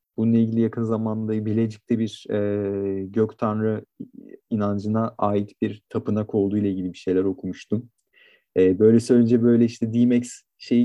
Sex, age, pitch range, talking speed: male, 40-59, 105-125 Hz, 140 wpm